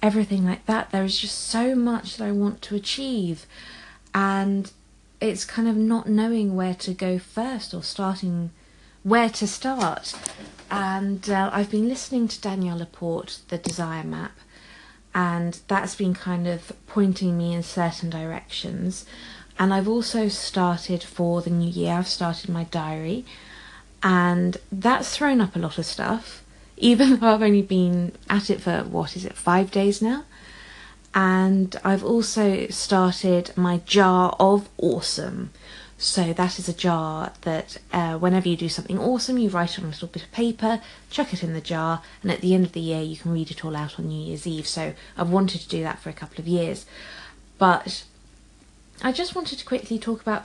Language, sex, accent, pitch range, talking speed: English, female, British, 175-220 Hz, 180 wpm